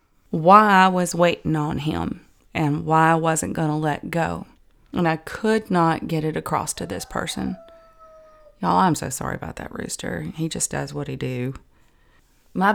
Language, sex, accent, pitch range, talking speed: English, female, American, 155-195 Hz, 180 wpm